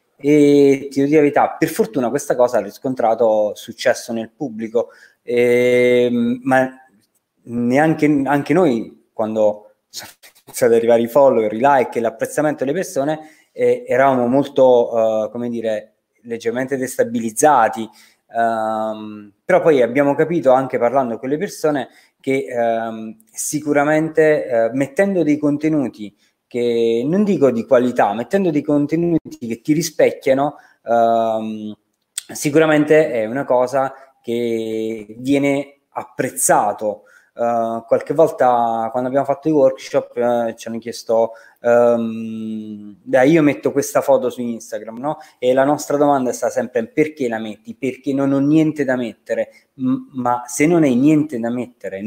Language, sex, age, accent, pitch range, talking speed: Italian, male, 20-39, native, 115-150 Hz, 135 wpm